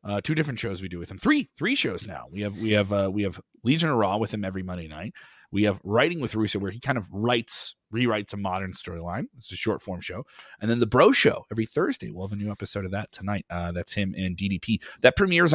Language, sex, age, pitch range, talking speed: English, male, 30-49, 95-140 Hz, 265 wpm